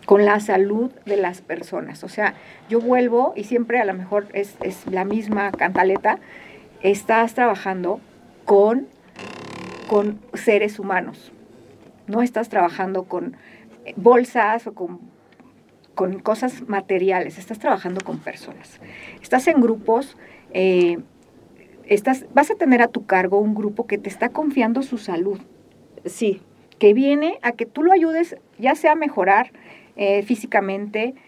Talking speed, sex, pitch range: 140 wpm, female, 195-250 Hz